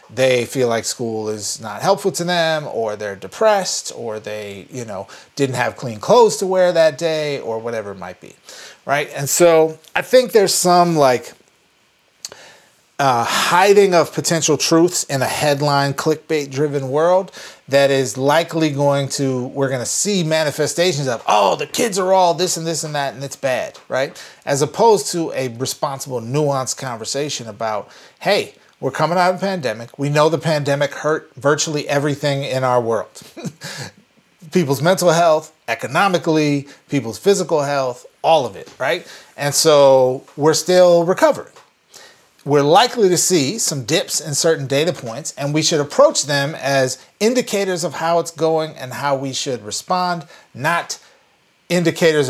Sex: male